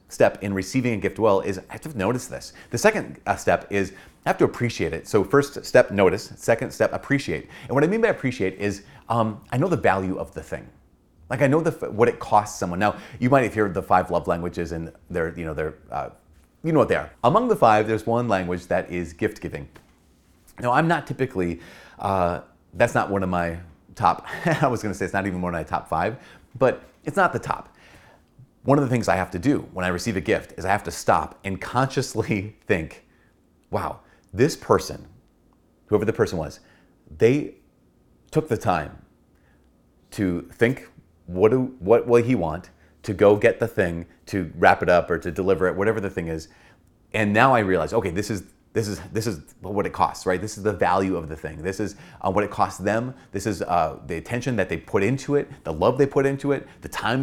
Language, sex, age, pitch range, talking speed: English, male, 30-49, 90-125 Hz, 225 wpm